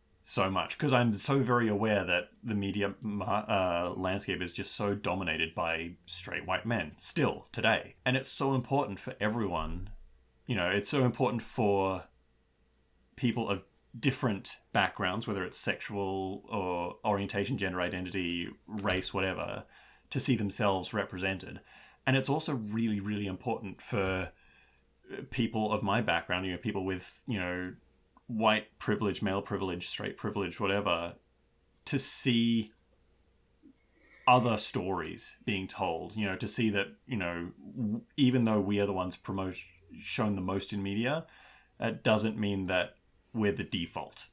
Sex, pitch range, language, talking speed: male, 90-110 Hz, English, 145 wpm